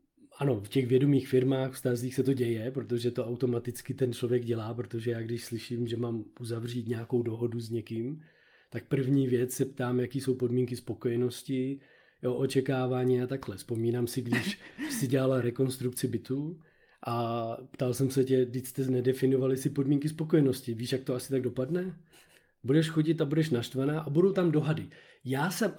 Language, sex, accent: Czech, male, native